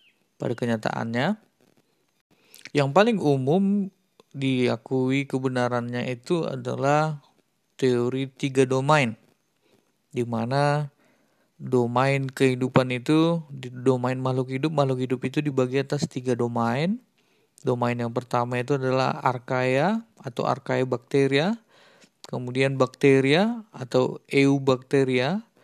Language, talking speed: Indonesian, 90 wpm